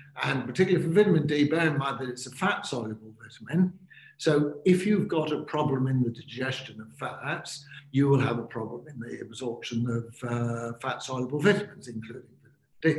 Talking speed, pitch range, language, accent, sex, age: 175 wpm, 125-155 Hz, English, British, male, 60-79